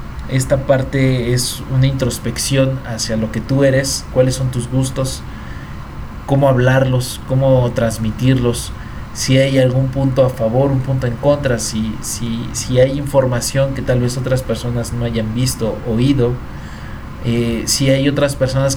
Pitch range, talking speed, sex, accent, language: 115-135 Hz, 155 wpm, male, Mexican, Spanish